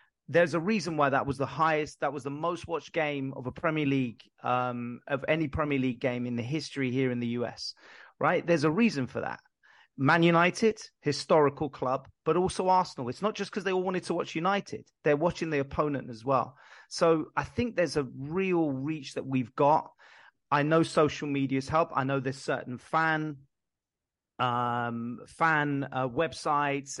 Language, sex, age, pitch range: English, male, 30-49, 130-165 Hz